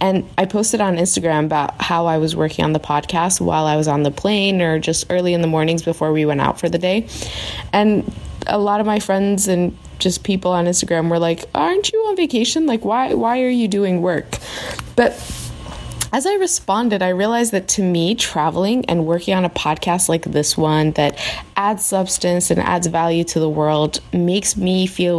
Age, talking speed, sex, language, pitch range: 20-39, 205 wpm, female, English, 155-190 Hz